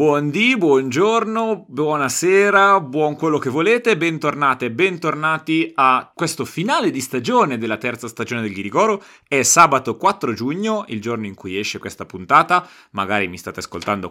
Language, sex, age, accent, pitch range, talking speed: Italian, male, 30-49, native, 110-160 Hz, 145 wpm